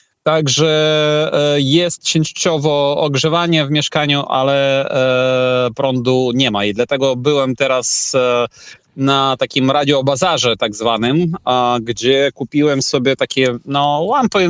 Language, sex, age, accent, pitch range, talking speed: Polish, male, 20-39, native, 130-150 Hz, 105 wpm